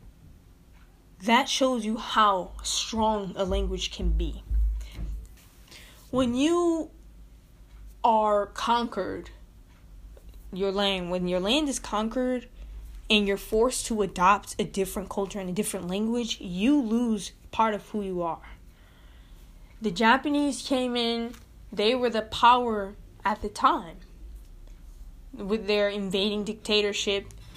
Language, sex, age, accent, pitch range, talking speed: English, female, 20-39, American, 180-235 Hz, 120 wpm